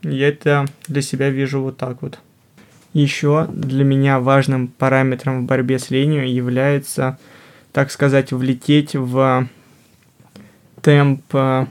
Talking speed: 120 wpm